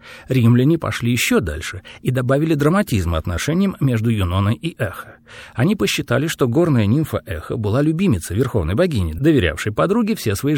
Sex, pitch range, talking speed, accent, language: male, 105-160 Hz, 150 wpm, native, Russian